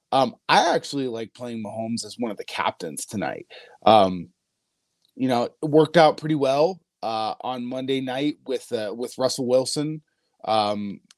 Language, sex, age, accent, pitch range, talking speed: English, male, 20-39, American, 125-155 Hz, 160 wpm